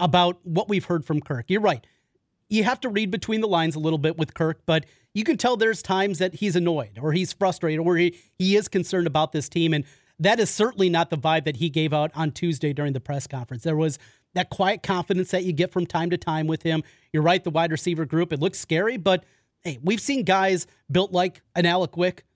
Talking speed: 240 wpm